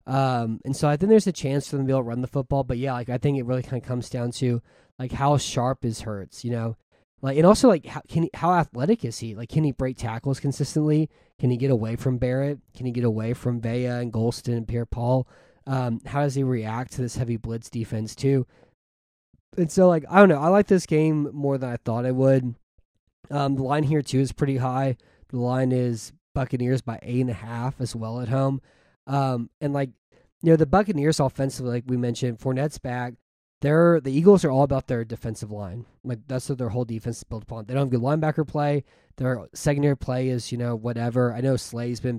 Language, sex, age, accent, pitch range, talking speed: English, male, 20-39, American, 120-140 Hz, 235 wpm